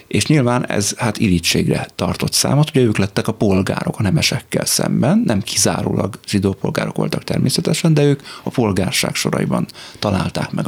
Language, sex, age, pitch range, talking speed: Hungarian, male, 30-49, 95-110 Hz, 150 wpm